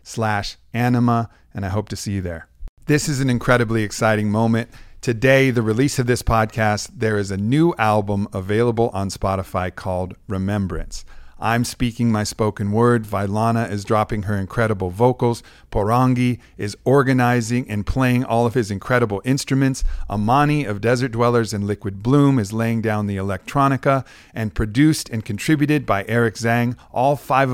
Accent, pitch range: American, 105-120 Hz